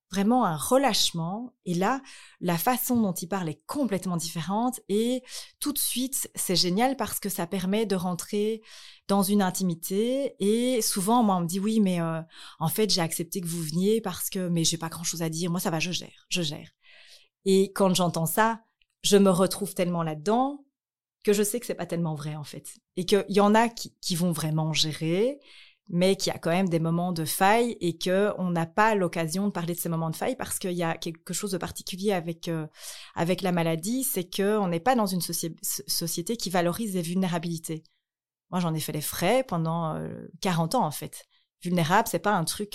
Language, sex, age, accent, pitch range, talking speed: French, female, 30-49, French, 165-210 Hz, 220 wpm